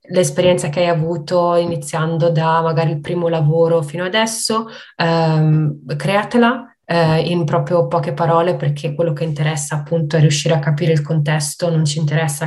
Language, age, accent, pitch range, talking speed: Italian, 20-39, native, 155-175 Hz, 160 wpm